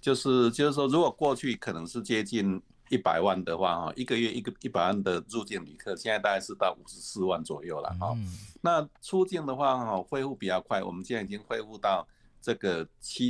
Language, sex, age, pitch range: Chinese, male, 50-69, 100-145 Hz